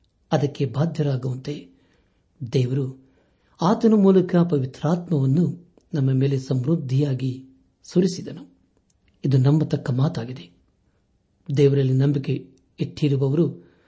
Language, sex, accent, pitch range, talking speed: Kannada, male, native, 130-170 Hz, 70 wpm